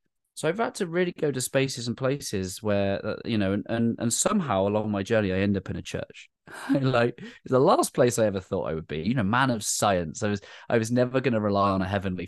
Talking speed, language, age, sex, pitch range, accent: 265 wpm, English, 20-39, male, 95-125 Hz, British